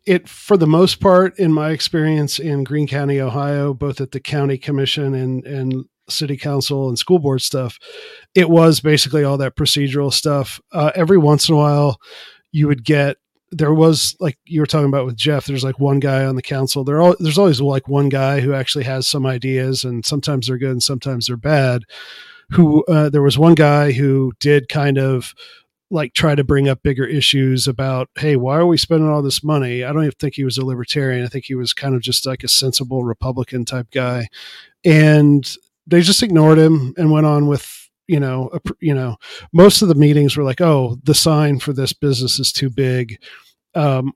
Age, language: 40-59, English